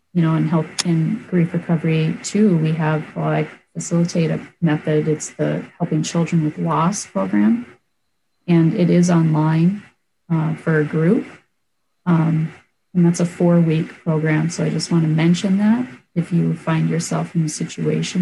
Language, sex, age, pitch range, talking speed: English, female, 30-49, 160-180 Hz, 170 wpm